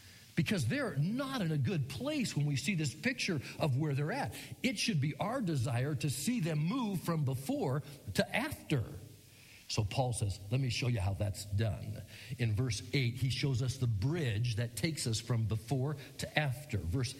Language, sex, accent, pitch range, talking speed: English, male, American, 115-145 Hz, 190 wpm